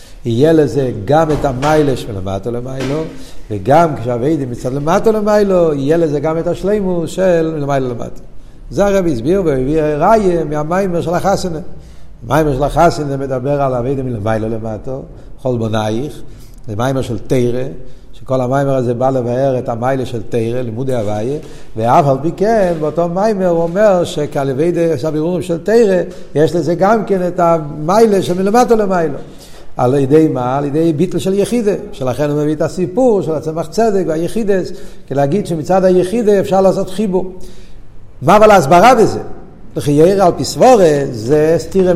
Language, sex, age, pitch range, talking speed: Hebrew, male, 60-79, 130-180 Hz, 155 wpm